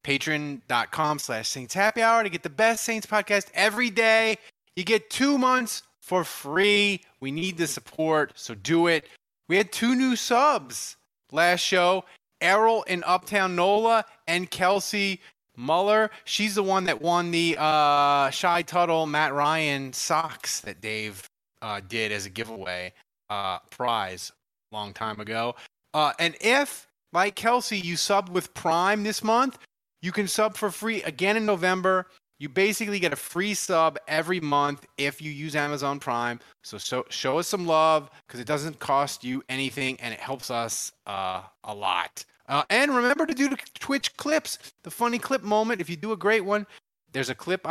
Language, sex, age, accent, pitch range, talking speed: English, male, 30-49, American, 150-210 Hz, 170 wpm